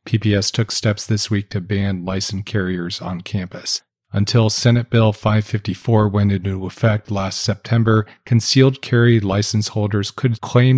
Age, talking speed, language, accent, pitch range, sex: 40-59, 145 wpm, English, American, 100-110 Hz, male